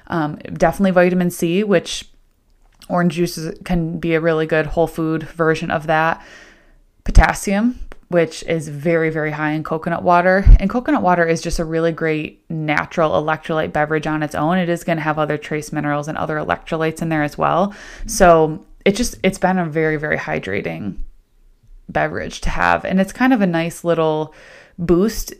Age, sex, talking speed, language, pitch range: 20-39, female, 175 wpm, English, 155-180 Hz